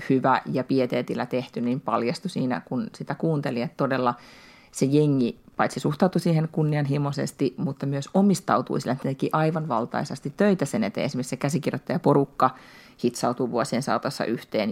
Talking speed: 140 wpm